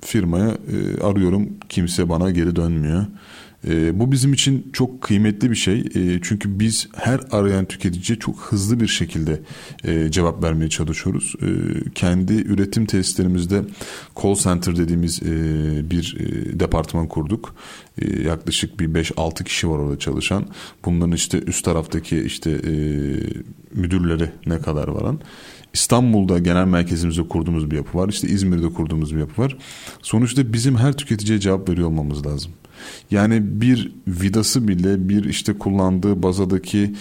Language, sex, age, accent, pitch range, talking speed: Turkish, male, 30-49, native, 85-105 Hz, 145 wpm